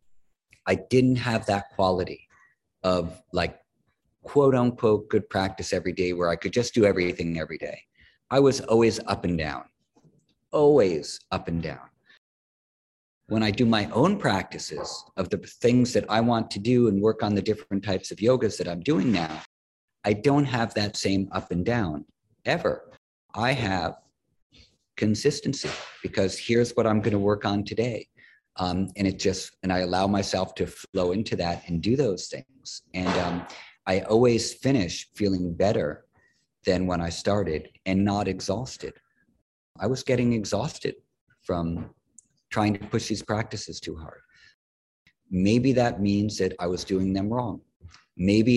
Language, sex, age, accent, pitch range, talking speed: English, male, 50-69, American, 95-115 Hz, 160 wpm